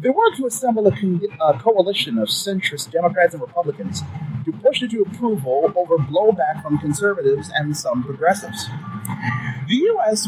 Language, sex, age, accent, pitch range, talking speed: English, male, 30-49, American, 140-215 Hz, 150 wpm